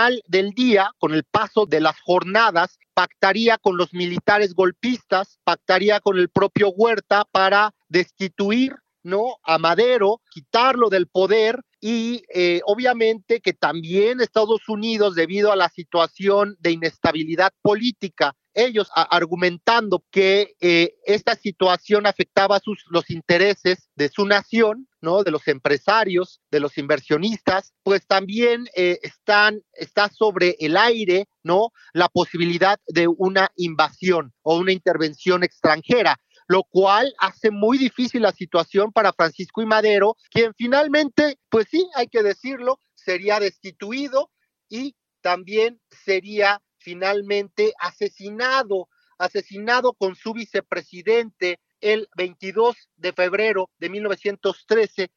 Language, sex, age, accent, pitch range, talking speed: Spanish, male, 40-59, Mexican, 180-220 Hz, 125 wpm